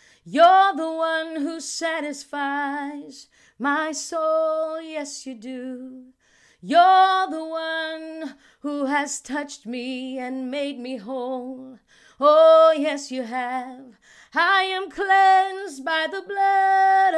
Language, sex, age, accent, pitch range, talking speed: English, female, 30-49, American, 260-320 Hz, 110 wpm